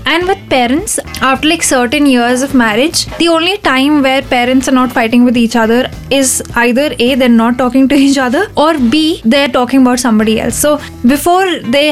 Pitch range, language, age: 240-280 Hz, English, 10-29